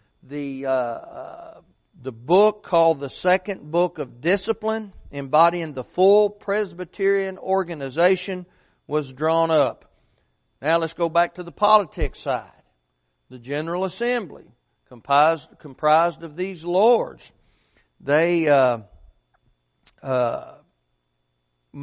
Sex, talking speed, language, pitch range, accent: male, 100 wpm, English, 140-180 Hz, American